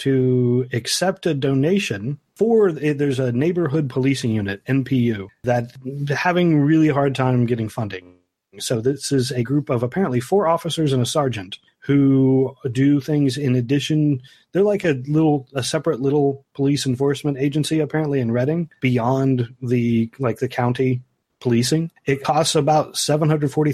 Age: 30-49